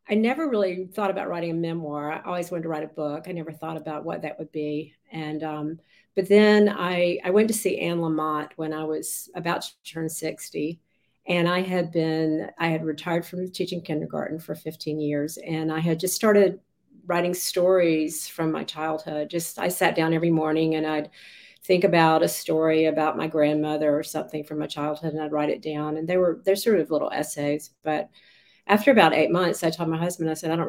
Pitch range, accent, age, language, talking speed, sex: 155-175 Hz, American, 50-69, English, 215 wpm, female